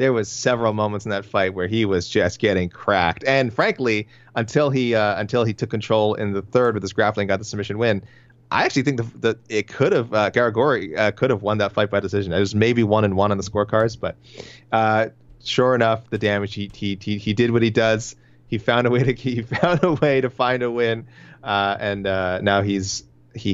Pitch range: 100-125 Hz